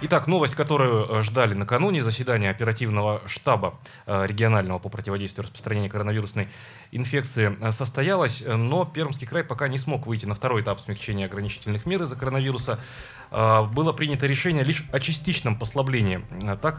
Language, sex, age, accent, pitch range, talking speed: Russian, male, 30-49, native, 110-140 Hz, 135 wpm